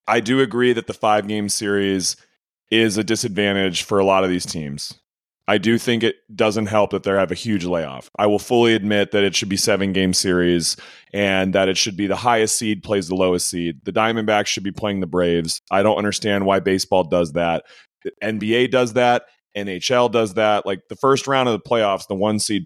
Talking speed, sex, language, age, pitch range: 215 wpm, male, English, 30-49, 95-130 Hz